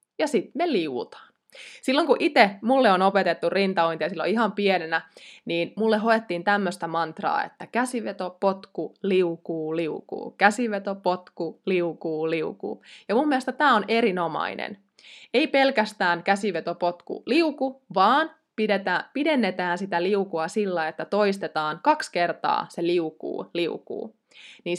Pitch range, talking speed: 175-245 Hz, 125 wpm